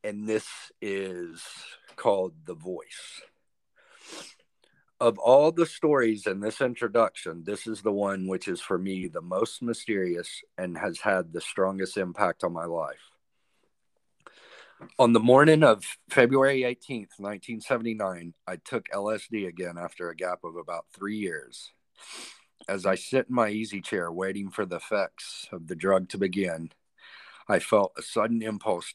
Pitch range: 95-115 Hz